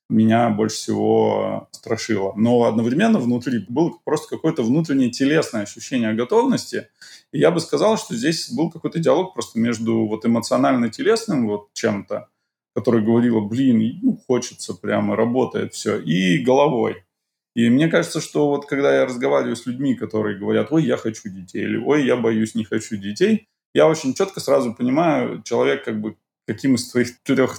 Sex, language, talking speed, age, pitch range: male, Russian, 160 wpm, 20-39, 110-160 Hz